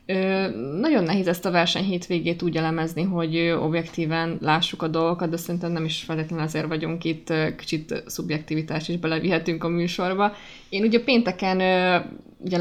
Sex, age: female, 20-39